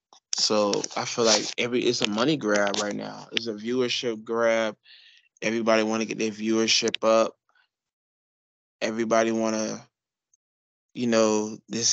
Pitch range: 105-130 Hz